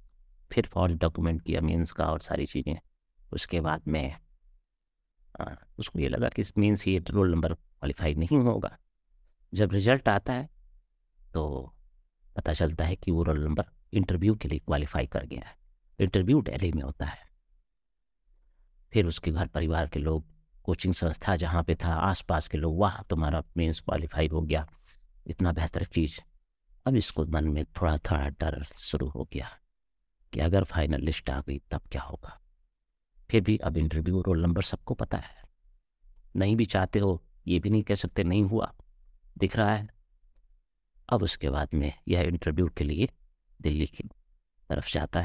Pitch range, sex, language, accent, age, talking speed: 75-95 Hz, male, Hindi, native, 50-69, 165 wpm